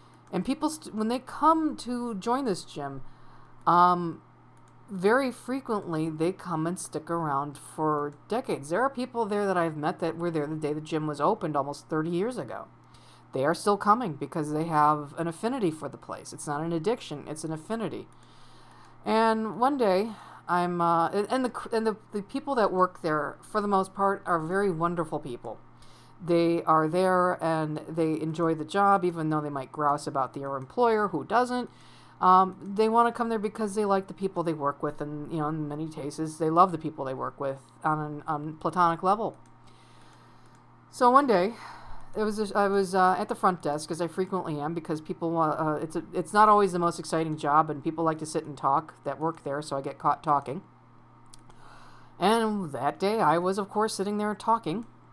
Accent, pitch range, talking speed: American, 150-205 Hz, 200 wpm